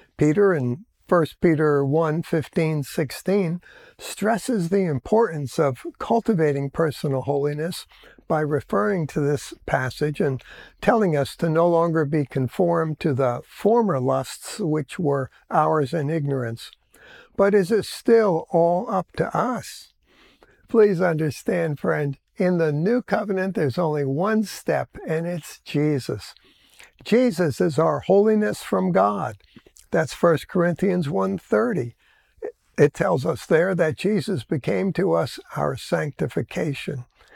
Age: 60-79